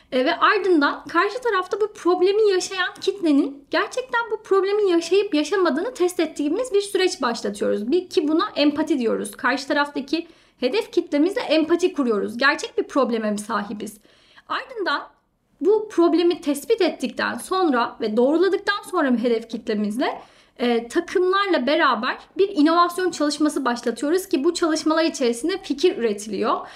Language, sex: Turkish, female